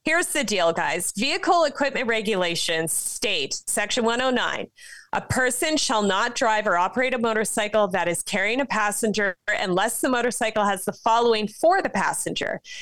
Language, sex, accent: English, female, American